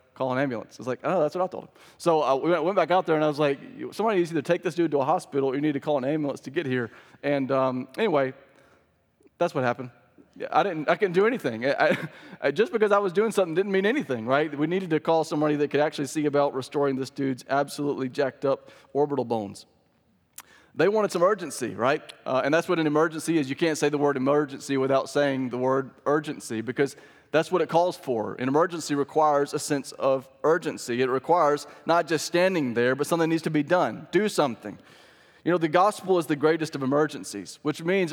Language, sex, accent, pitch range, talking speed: English, male, American, 135-165 Hz, 230 wpm